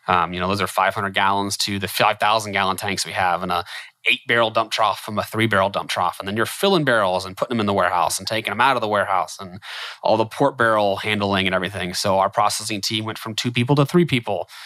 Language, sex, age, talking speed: English, male, 30-49, 245 wpm